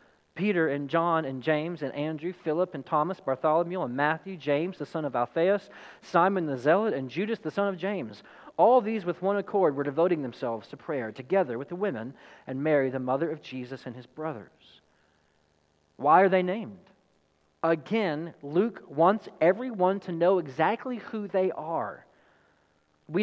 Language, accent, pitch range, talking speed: English, American, 145-190 Hz, 170 wpm